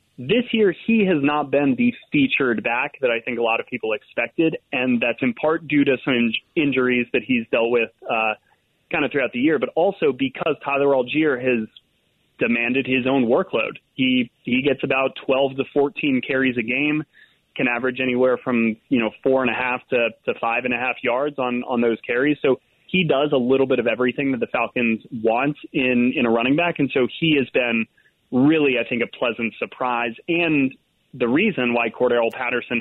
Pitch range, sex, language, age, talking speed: 120-140 Hz, male, English, 30-49, 205 wpm